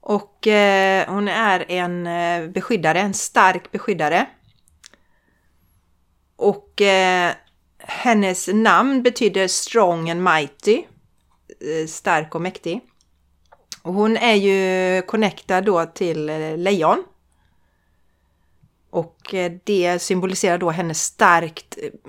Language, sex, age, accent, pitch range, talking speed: Swedish, female, 30-49, native, 170-220 Hz, 85 wpm